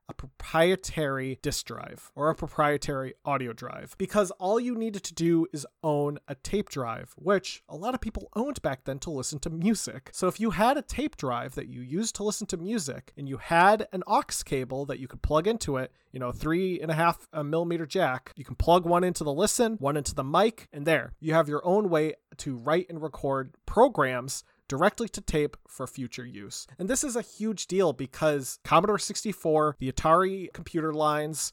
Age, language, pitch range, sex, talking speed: 30-49, English, 135-185 Hz, male, 205 wpm